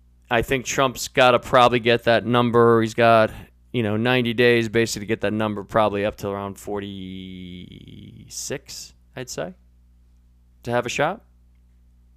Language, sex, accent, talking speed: English, male, American, 155 wpm